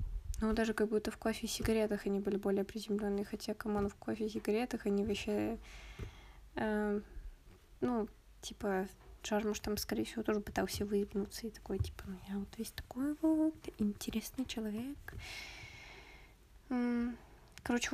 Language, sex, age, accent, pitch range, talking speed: Russian, female, 20-39, native, 205-230 Hz, 130 wpm